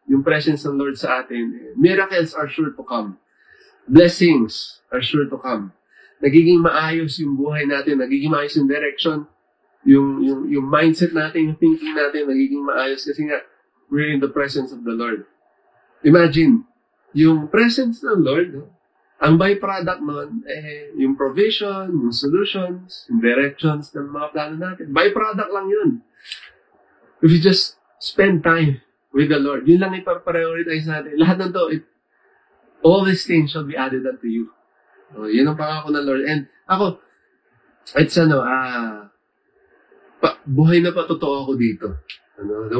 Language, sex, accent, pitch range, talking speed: Filipino, male, native, 135-175 Hz, 155 wpm